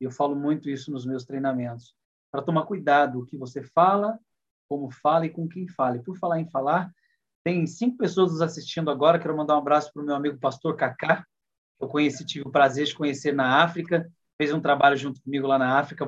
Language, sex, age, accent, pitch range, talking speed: Portuguese, male, 30-49, Brazilian, 150-200 Hz, 220 wpm